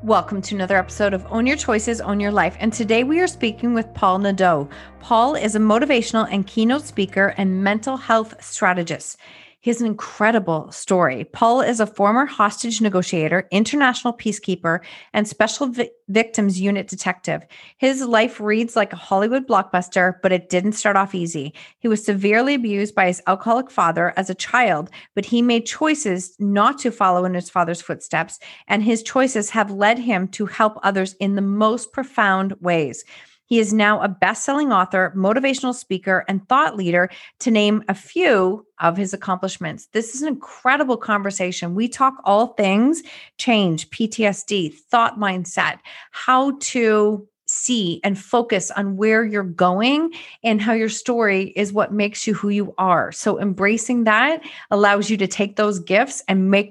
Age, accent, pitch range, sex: 40-59, American, 190-230 Hz, female